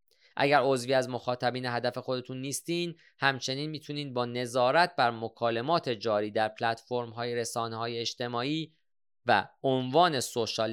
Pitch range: 110-140 Hz